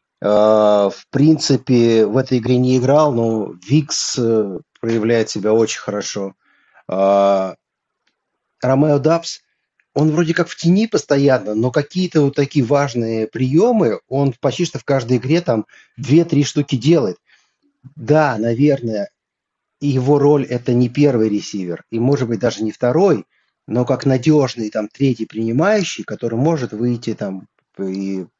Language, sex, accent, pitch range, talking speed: Russian, male, native, 110-145 Hz, 135 wpm